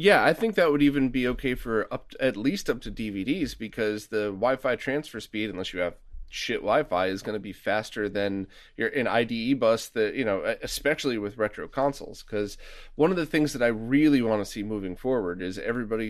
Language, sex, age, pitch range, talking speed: English, male, 30-49, 105-140 Hz, 215 wpm